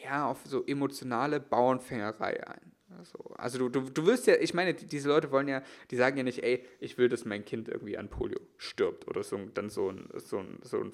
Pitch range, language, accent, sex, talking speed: 115-145 Hz, German, German, male, 230 wpm